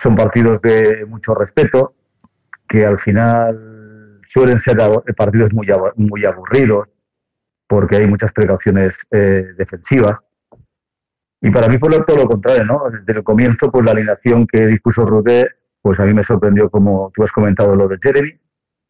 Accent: Spanish